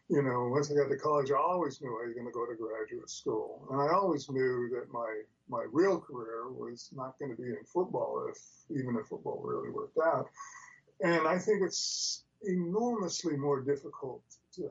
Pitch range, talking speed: 140-180 Hz, 200 wpm